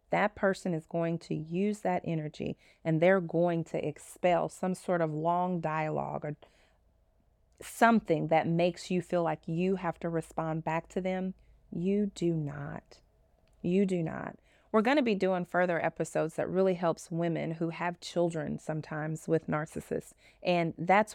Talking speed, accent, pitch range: 160 wpm, American, 165-185 Hz